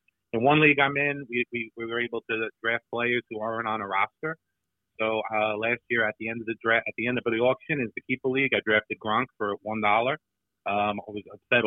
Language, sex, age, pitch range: English, male, 30-49, 110-130 Hz